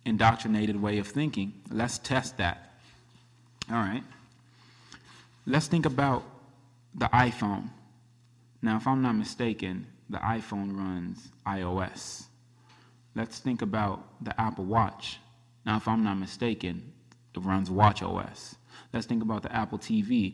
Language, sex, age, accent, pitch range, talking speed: English, male, 20-39, American, 100-120 Hz, 130 wpm